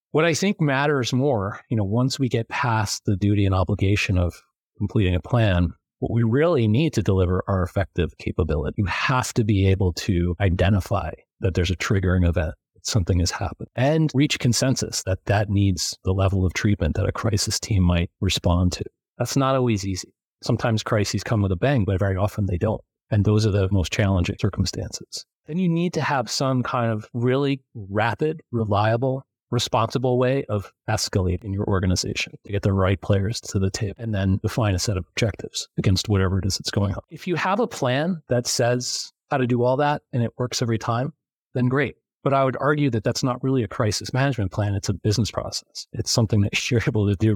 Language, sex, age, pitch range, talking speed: English, male, 40-59, 95-125 Hz, 205 wpm